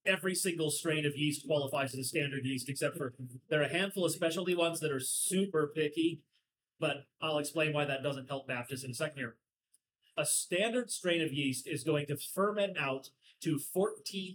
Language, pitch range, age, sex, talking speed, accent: English, 135-180 Hz, 30-49, male, 195 wpm, American